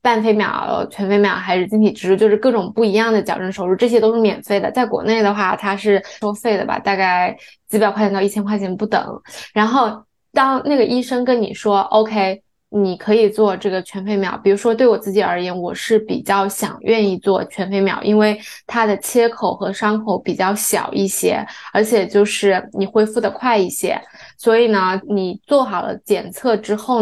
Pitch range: 195-225 Hz